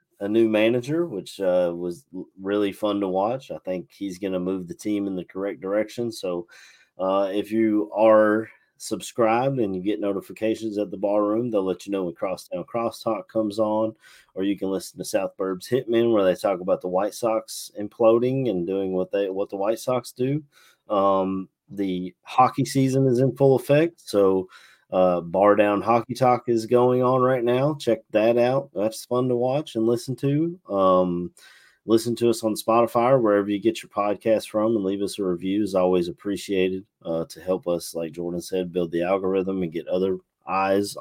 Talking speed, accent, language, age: 195 wpm, American, English, 30-49